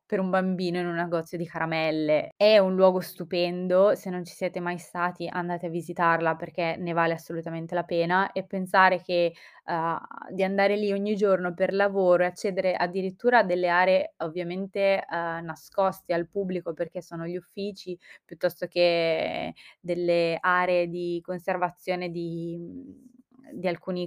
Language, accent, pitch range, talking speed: Italian, native, 175-195 Hz, 155 wpm